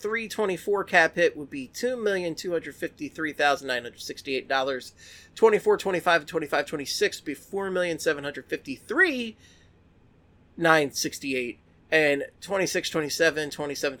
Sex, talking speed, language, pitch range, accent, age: male, 140 wpm, English, 145-230 Hz, American, 30-49